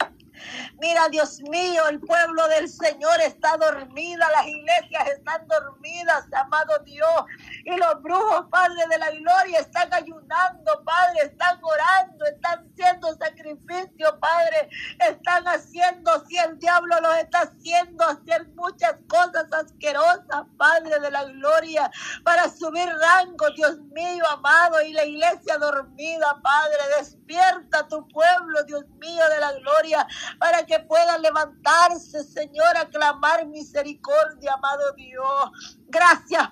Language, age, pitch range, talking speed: Spanish, 40-59, 300-340 Hz, 125 wpm